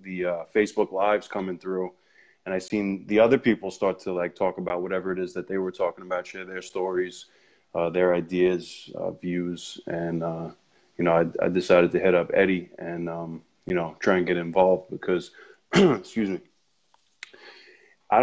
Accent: American